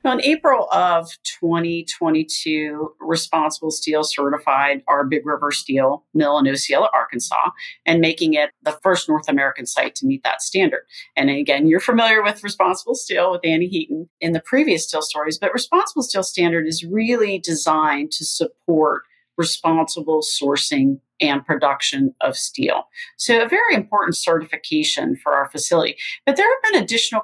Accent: American